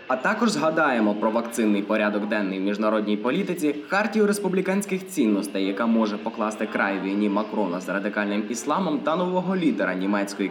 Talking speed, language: 150 wpm, Ukrainian